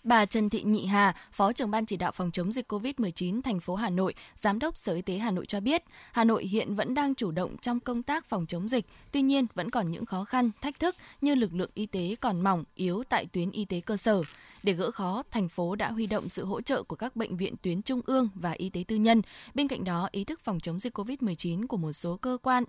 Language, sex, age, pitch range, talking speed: Vietnamese, female, 20-39, 185-240 Hz, 265 wpm